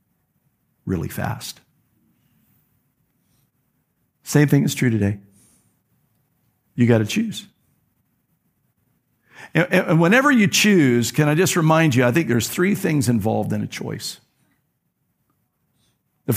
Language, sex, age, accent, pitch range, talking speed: English, male, 50-69, American, 125-170 Hz, 115 wpm